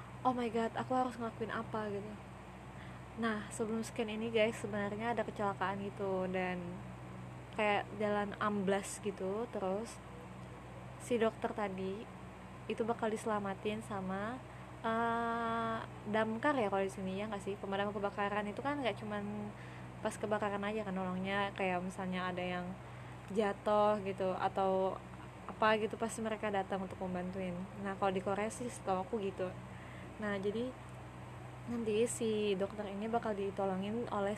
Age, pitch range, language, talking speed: 20-39, 185-220 Hz, Indonesian, 140 wpm